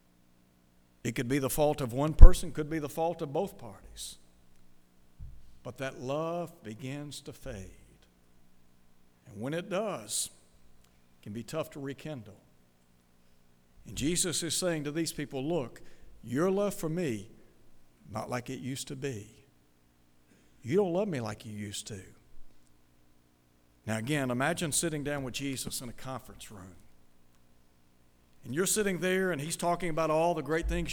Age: 60-79